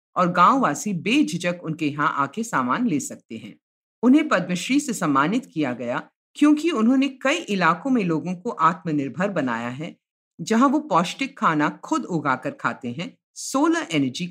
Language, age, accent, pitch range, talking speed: Hindi, 50-69, native, 160-260 Hz, 75 wpm